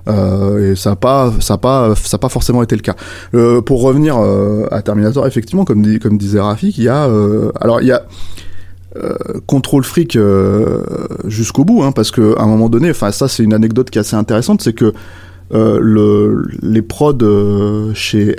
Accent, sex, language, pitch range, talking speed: French, male, French, 105-125 Hz, 195 wpm